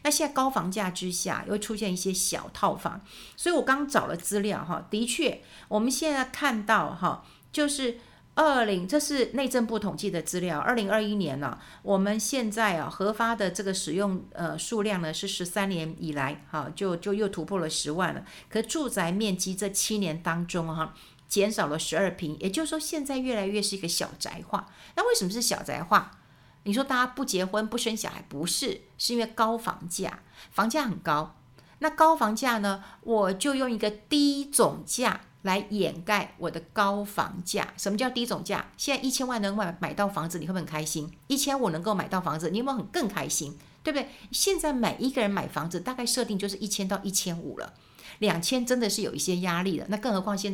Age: 50-69